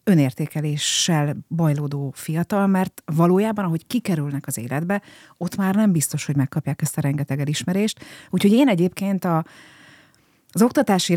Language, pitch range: Hungarian, 150-195 Hz